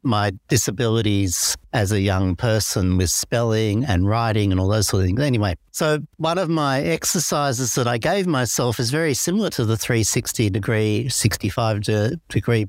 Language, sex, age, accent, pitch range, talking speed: English, male, 60-79, Australian, 115-140 Hz, 170 wpm